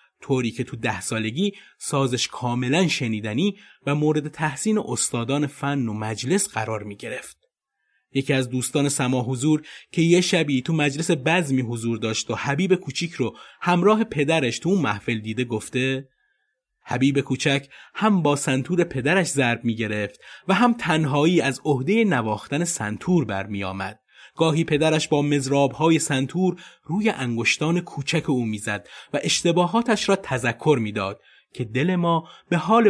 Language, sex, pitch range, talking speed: Persian, male, 120-180 Hz, 150 wpm